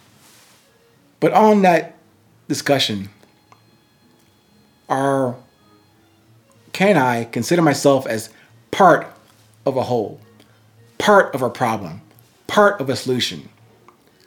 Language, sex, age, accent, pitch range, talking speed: English, male, 40-59, American, 110-160 Hz, 95 wpm